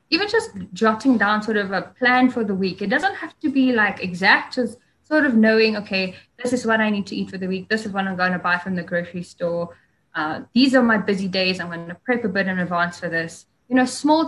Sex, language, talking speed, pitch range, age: female, English, 265 wpm, 195-250 Hz, 10-29